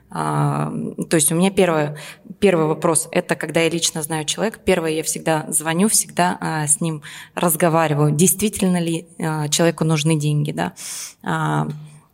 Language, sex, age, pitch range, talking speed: Russian, female, 20-39, 155-180 Hz, 165 wpm